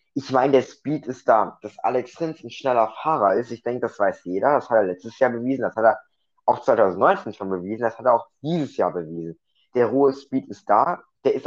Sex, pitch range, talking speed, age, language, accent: male, 110-135 Hz, 235 wpm, 20-39, German, German